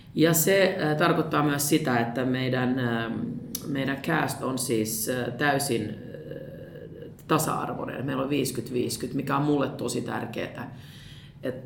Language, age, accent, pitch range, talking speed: Finnish, 30-49, native, 120-145 Hz, 115 wpm